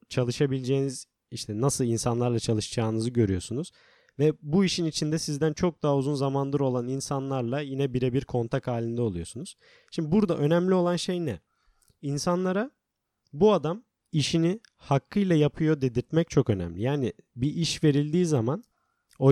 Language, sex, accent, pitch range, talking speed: Turkish, male, native, 125-165 Hz, 135 wpm